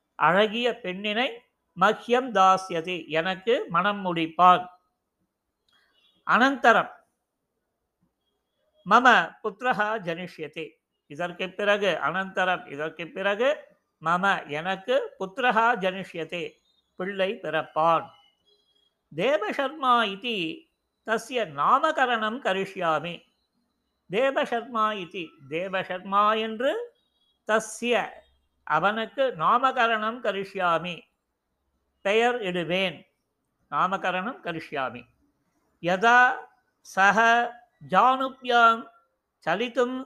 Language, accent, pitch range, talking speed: Tamil, native, 180-235 Hz, 50 wpm